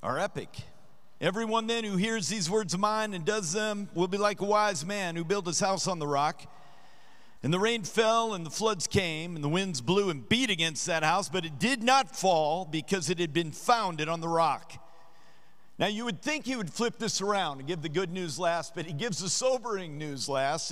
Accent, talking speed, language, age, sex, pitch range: American, 225 wpm, English, 50-69, male, 160-215 Hz